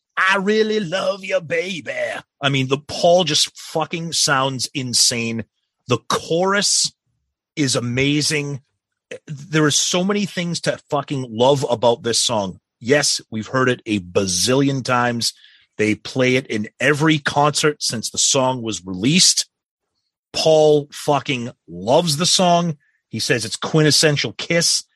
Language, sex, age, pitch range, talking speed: English, male, 30-49, 115-150 Hz, 135 wpm